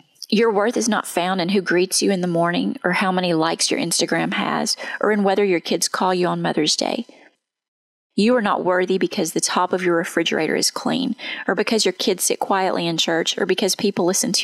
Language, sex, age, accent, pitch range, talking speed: English, female, 30-49, American, 175-210 Hz, 225 wpm